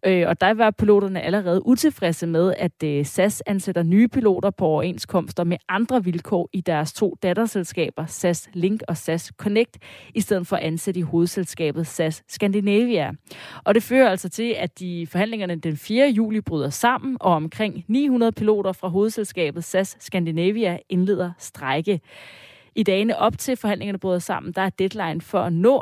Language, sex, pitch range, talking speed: Danish, female, 165-205 Hz, 165 wpm